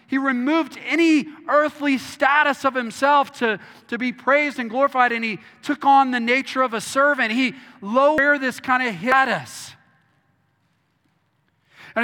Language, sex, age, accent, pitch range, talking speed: English, male, 30-49, American, 195-265 Hz, 145 wpm